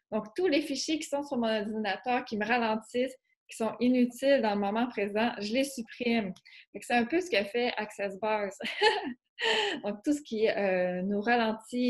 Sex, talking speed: female, 180 wpm